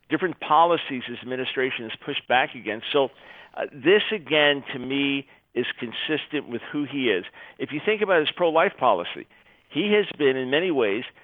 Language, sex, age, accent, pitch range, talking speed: English, male, 50-69, American, 125-155 Hz, 175 wpm